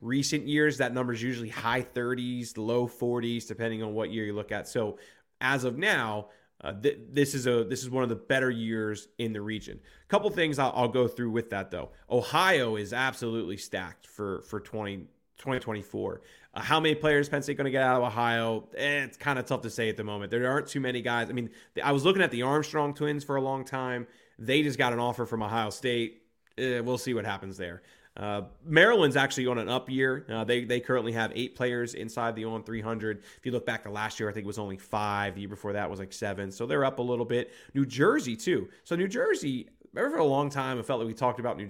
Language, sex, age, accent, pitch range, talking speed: English, male, 20-39, American, 110-130 Hz, 245 wpm